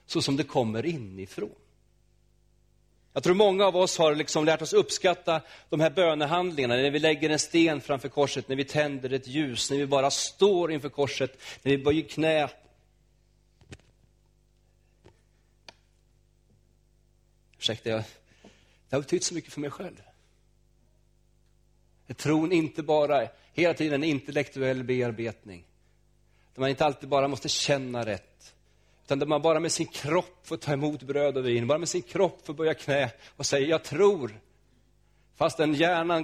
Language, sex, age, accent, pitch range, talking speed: Swedish, male, 30-49, native, 120-155 Hz, 155 wpm